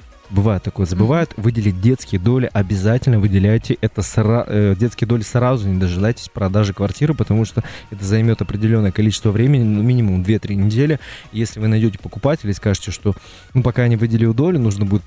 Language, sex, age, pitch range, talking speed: Russian, male, 20-39, 100-120 Hz, 175 wpm